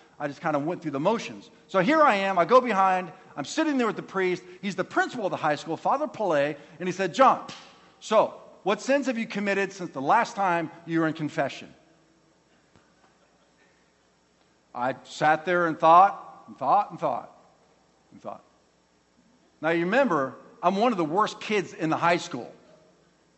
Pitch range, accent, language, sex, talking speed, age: 140-225 Hz, American, English, male, 185 wpm, 50-69